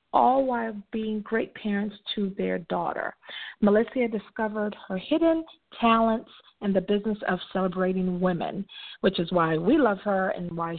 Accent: American